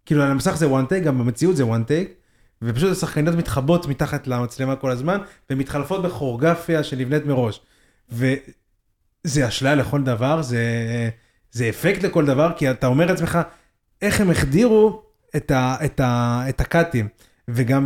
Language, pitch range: Hebrew, 125-170 Hz